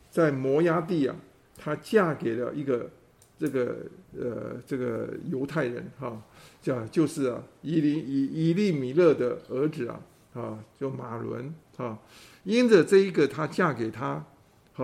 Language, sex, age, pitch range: Chinese, male, 50-69, 125-160 Hz